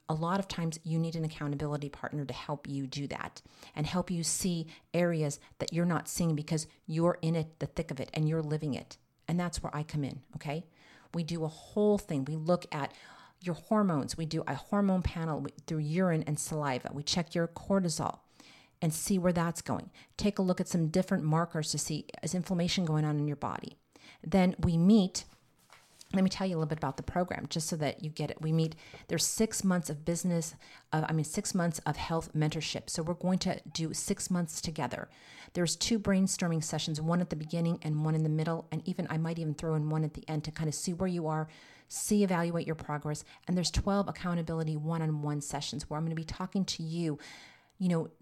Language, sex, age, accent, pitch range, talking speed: English, female, 40-59, American, 155-180 Hz, 225 wpm